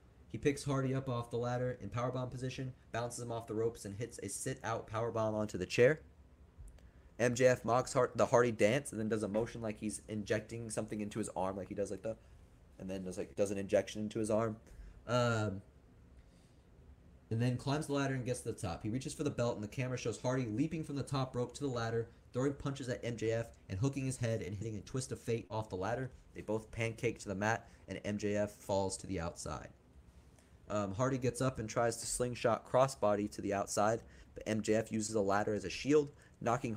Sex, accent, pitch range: male, American, 100-120 Hz